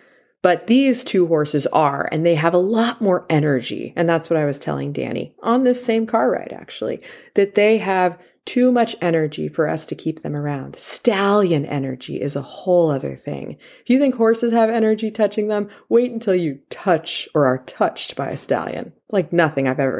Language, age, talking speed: English, 30-49, 200 wpm